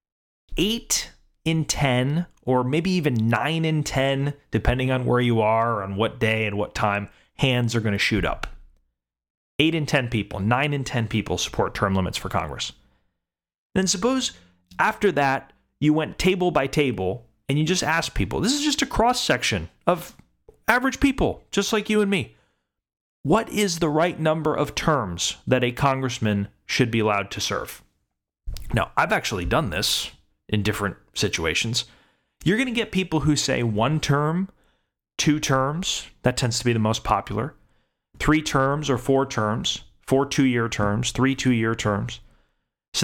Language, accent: English, American